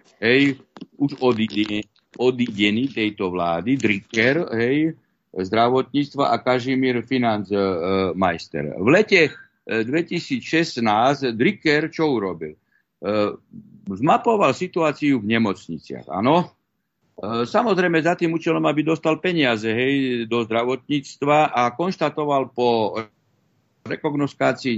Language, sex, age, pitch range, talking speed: Czech, male, 60-79, 115-155 Hz, 90 wpm